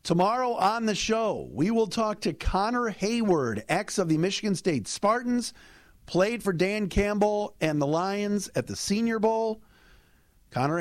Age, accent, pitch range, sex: 50-69, American, 130-205 Hz, male